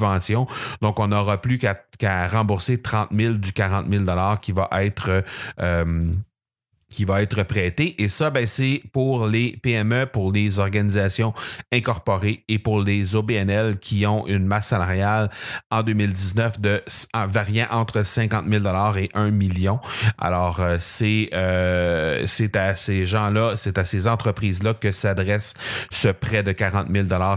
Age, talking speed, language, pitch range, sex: 30-49, 150 wpm, French, 100-115 Hz, male